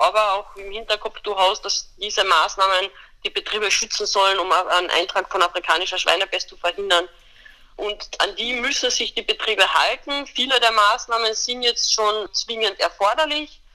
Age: 20-39